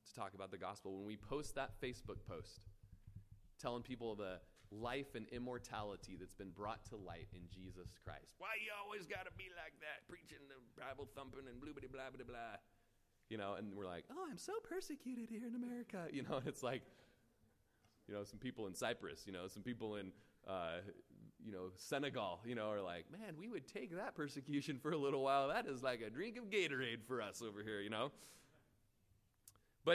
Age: 30-49